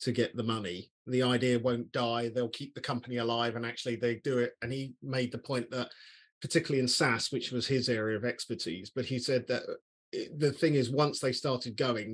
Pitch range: 120-140 Hz